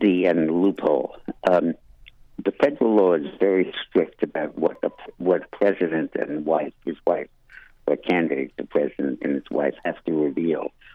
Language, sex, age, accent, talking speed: English, male, 60-79, American, 155 wpm